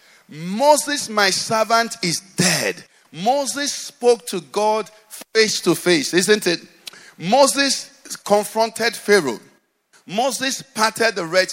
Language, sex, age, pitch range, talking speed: English, male, 50-69, 180-240 Hz, 110 wpm